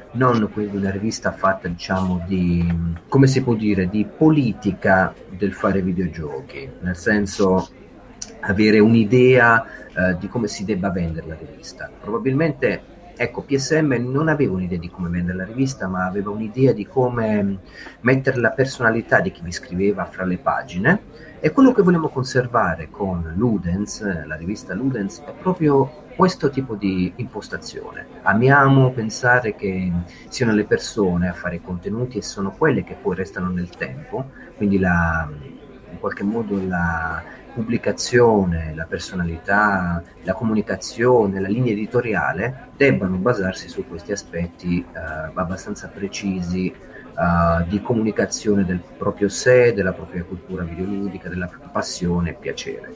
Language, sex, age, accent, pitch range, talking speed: Italian, male, 40-59, native, 90-120 Hz, 140 wpm